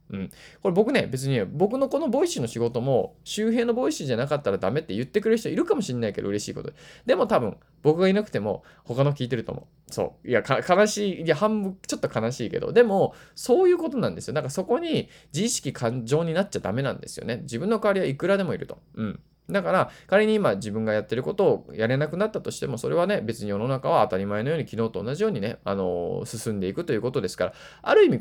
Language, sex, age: Japanese, male, 20-39